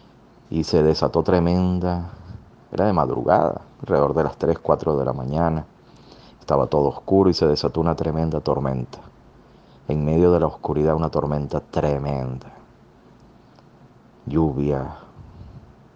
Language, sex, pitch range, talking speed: Spanish, male, 75-95 Hz, 125 wpm